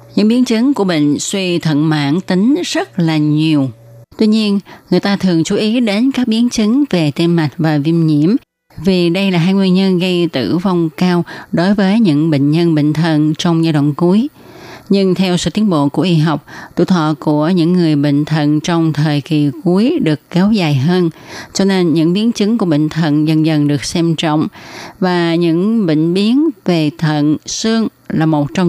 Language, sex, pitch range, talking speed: Vietnamese, female, 155-195 Hz, 200 wpm